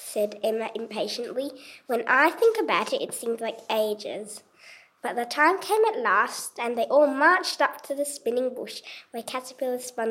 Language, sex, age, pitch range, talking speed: English, female, 20-39, 225-300 Hz, 180 wpm